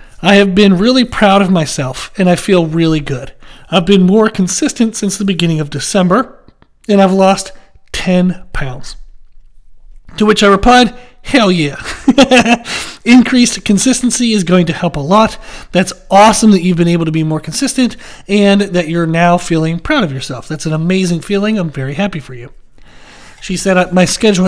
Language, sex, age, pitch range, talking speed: English, male, 40-59, 165-210 Hz, 175 wpm